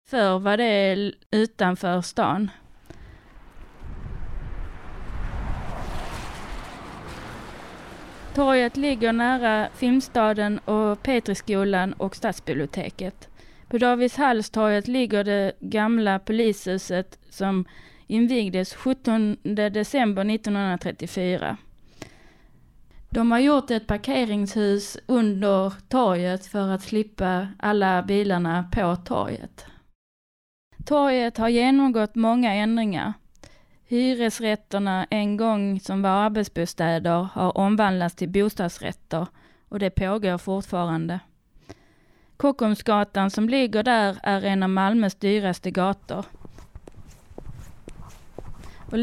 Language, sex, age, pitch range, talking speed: Swedish, female, 30-49, 190-225 Hz, 85 wpm